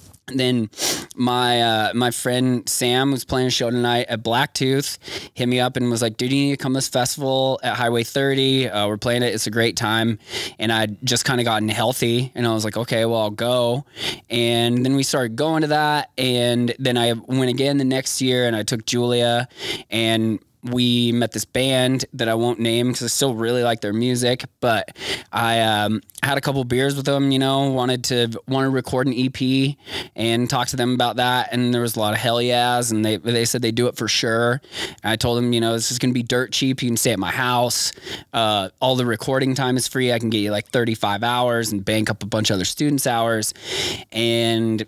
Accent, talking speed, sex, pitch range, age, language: American, 230 wpm, male, 115-130 Hz, 20-39, English